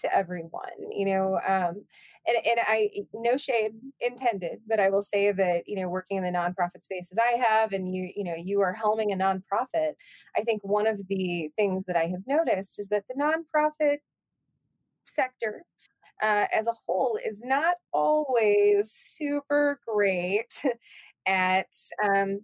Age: 20-39